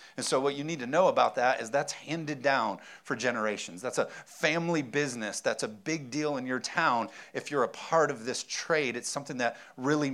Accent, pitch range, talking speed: American, 135-160 Hz, 220 wpm